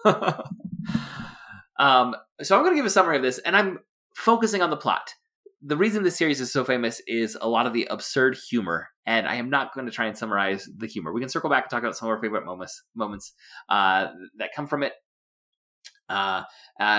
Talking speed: 215 wpm